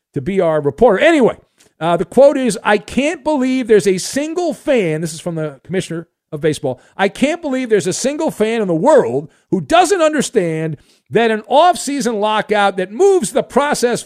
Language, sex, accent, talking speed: English, male, American, 190 wpm